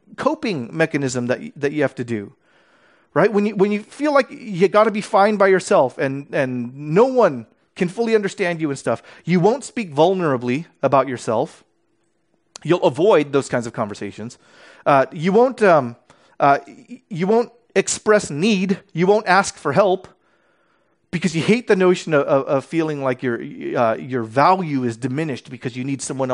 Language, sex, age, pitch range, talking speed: English, male, 30-49, 140-200 Hz, 180 wpm